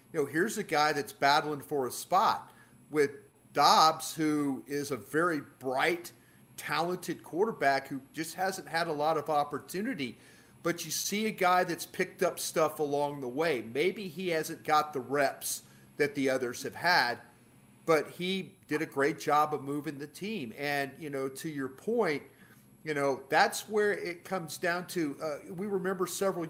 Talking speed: 175 wpm